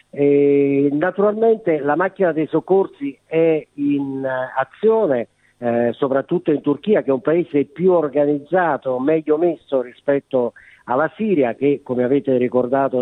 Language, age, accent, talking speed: Italian, 50-69, native, 120 wpm